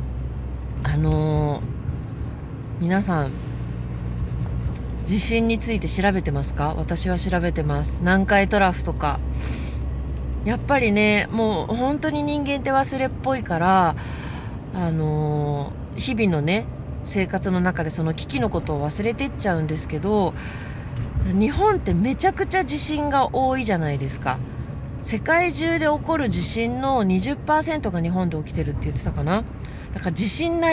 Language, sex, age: Japanese, female, 40-59